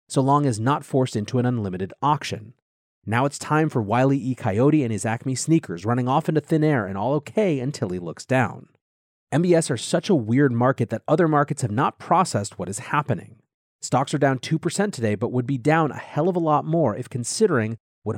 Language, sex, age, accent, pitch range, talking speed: English, male, 30-49, American, 110-140 Hz, 215 wpm